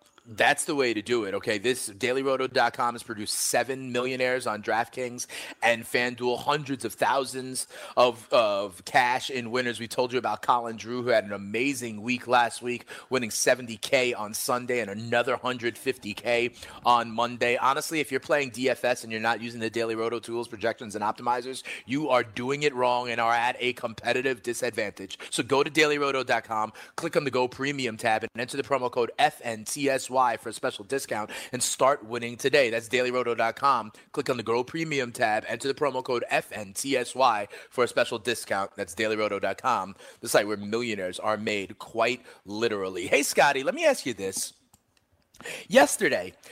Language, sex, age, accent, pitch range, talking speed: English, male, 30-49, American, 115-140 Hz, 170 wpm